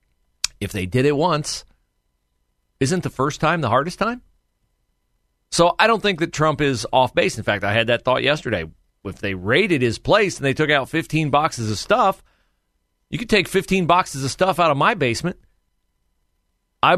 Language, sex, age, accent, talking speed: English, male, 40-59, American, 185 wpm